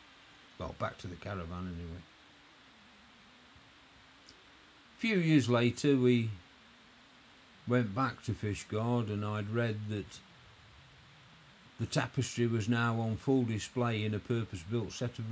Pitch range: 100-120 Hz